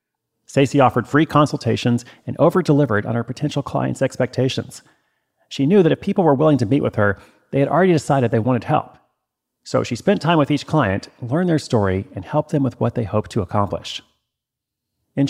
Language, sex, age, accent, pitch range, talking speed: English, male, 40-59, American, 115-150 Hz, 190 wpm